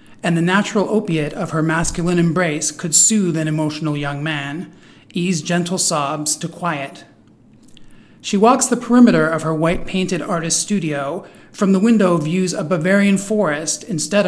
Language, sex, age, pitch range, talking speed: English, male, 40-59, 155-185 Hz, 150 wpm